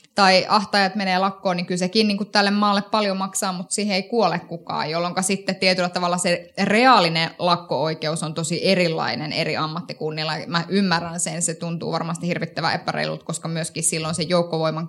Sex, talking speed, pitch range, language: female, 170 wpm, 165-200 Hz, Finnish